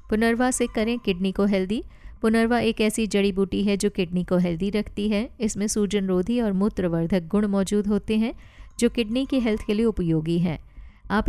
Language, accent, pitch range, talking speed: Hindi, native, 190-230 Hz, 185 wpm